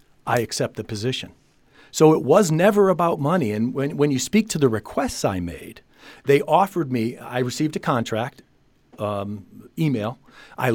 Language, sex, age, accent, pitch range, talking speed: English, male, 50-69, American, 115-150 Hz, 165 wpm